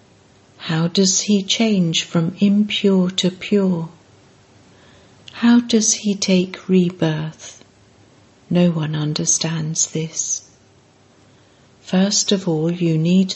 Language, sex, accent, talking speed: English, female, British, 100 wpm